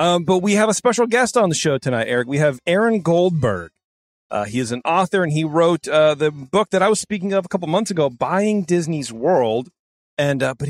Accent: American